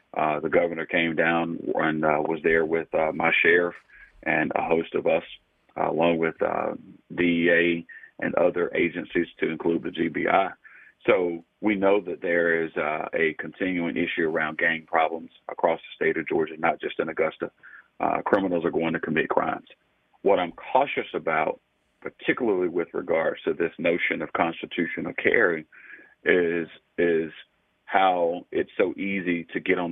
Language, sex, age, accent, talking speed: English, male, 40-59, American, 160 wpm